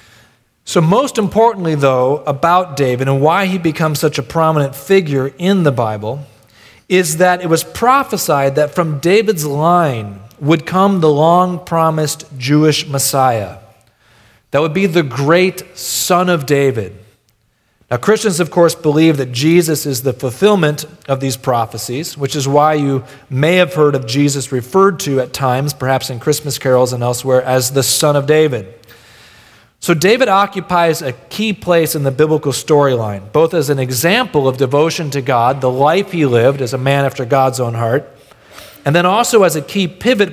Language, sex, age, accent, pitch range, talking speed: English, male, 40-59, American, 125-165 Hz, 170 wpm